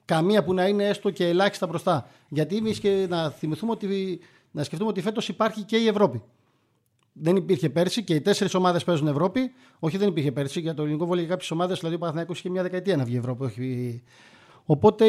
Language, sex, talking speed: Greek, male, 210 wpm